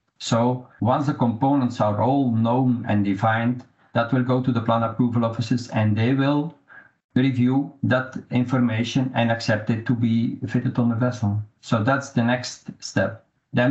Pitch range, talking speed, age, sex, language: 110-130 Hz, 165 wpm, 50-69, male, English